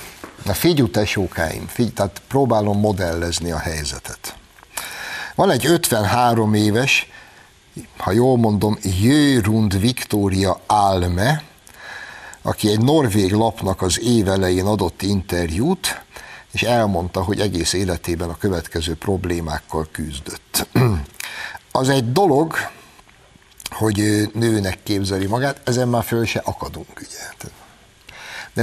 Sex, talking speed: male, 105 wpm